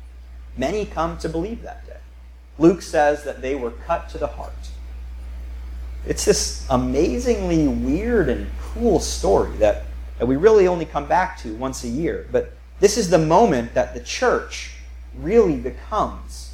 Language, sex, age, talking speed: English, male, 40-59, 155 wpm